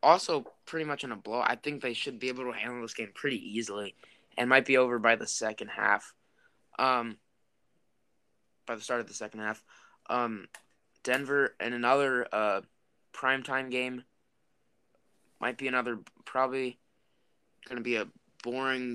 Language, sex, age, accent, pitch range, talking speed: English, male, 20-39, American, 115-130 Hz, 155 wpm